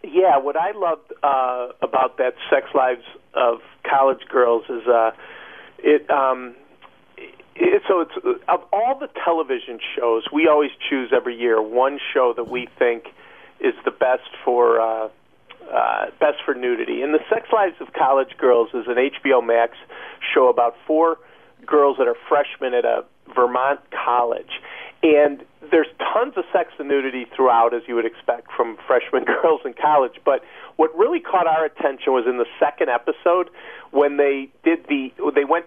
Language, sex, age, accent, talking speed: English, male, 50-69, American, 165 wpm